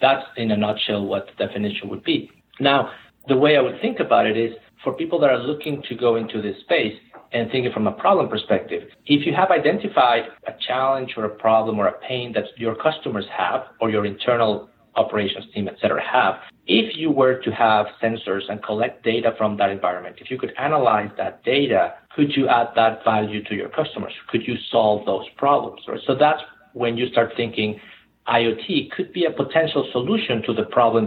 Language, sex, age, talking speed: English, male, 50-69, 200 wpm